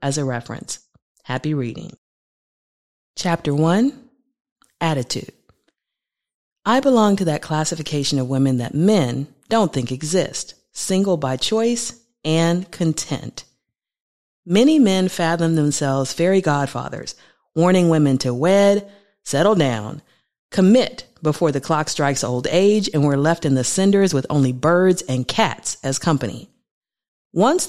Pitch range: 135-195 Hz